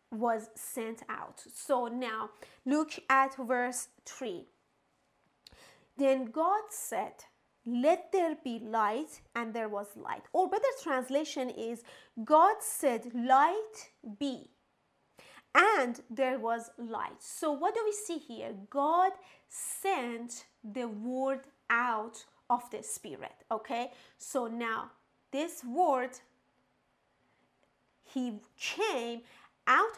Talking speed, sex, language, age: 110 wpm, female, English, 30-49